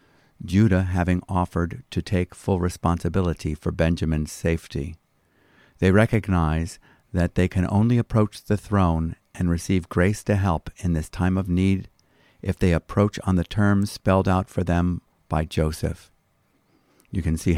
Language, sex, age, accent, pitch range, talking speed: English, male, 50-69, American, 85-100 Hz, 150 wpm